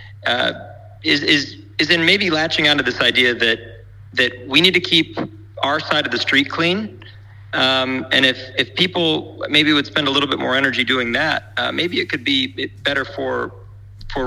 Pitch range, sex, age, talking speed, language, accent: 105-130 Hz, male, 40-59, 190 wpm, English, American